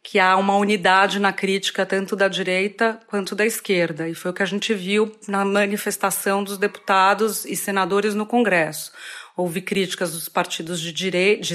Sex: female